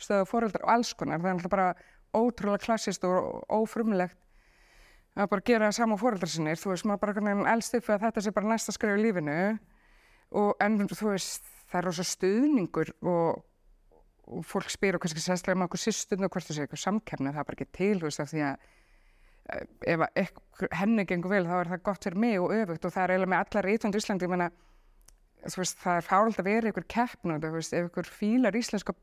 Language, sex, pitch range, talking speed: English, female, 170-215 Hz, 145 wpm